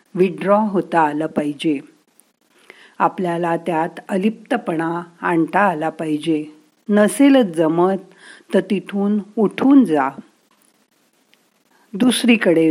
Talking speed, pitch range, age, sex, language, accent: 80 wpm, 165-230 Hz, 50-69, female, Marathi, native